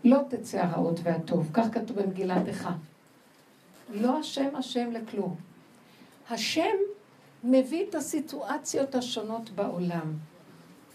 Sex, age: female, 60-79